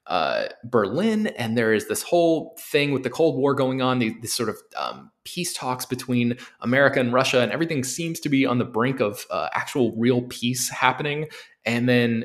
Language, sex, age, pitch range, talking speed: English, male, 20-39, 110-130 Hz, 200 wpm